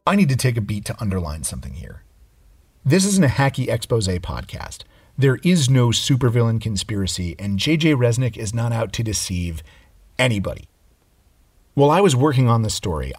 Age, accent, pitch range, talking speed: 40-59, American, 95-130 Hz, 170 wpm